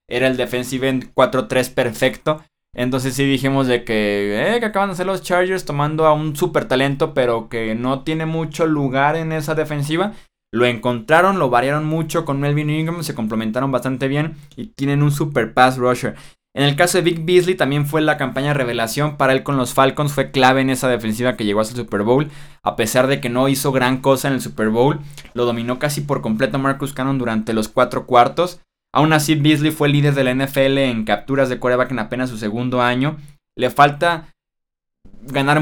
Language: Spanish